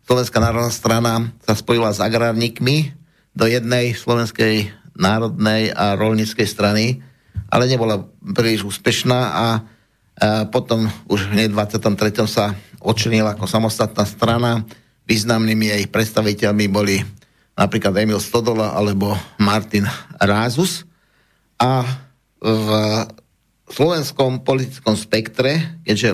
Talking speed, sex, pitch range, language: 105 wpm, male, 105-125 Hz, Slovak